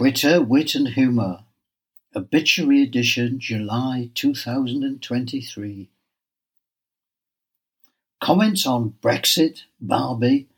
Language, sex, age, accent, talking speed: English, male, 60-79, British, 70 wpm